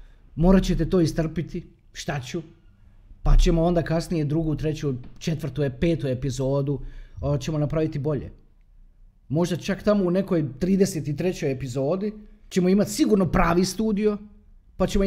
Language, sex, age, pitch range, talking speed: Croatian, male, 30-49, 125-180 Hz, 125 wpm